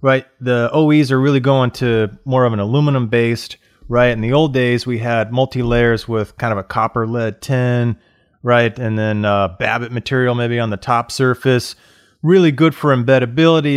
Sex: male